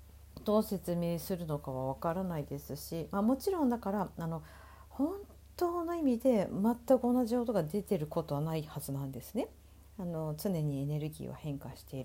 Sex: female